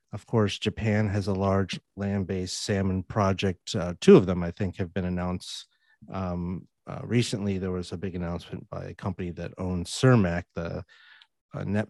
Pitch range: 90-105 Hz